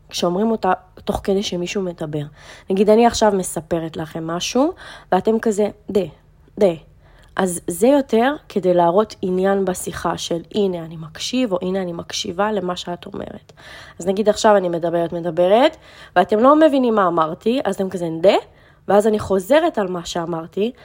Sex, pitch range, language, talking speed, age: female, 175-215 Hz, Hebrew, 160 wpm, 20-39